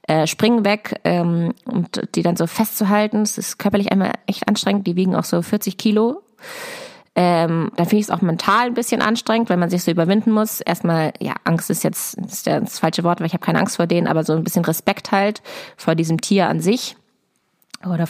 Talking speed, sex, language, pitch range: 220 wpm, female, German, 170-215 Hz